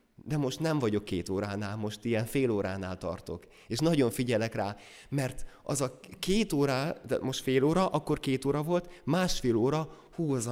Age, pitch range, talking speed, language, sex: 20-39, 100-135 Hz, 175 wpm, Hungarian, male